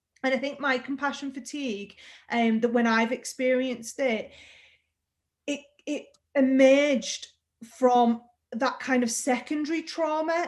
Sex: female